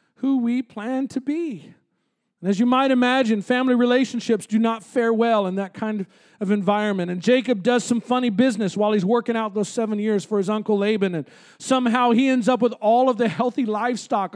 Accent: American